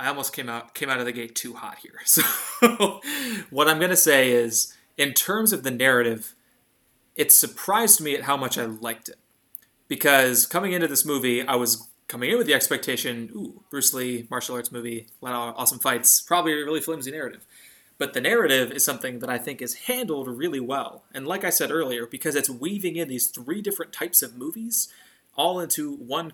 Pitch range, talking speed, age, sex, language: 125-170 Hz, 205 wpm, 20-39, male, English